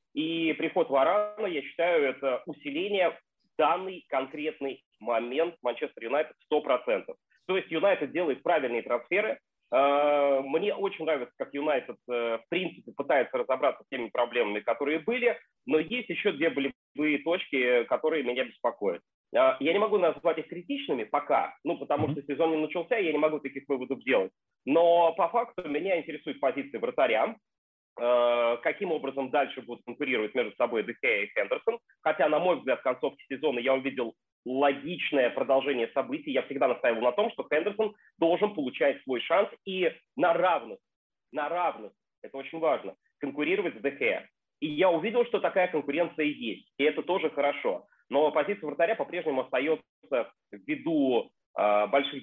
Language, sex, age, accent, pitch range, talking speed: Russian, male, 30-49, native, 140-205 Hz, 150 wpm